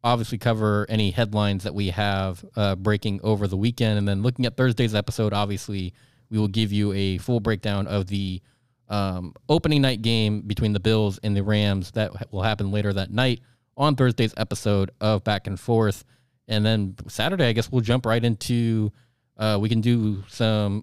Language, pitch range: English, 105-125 Hz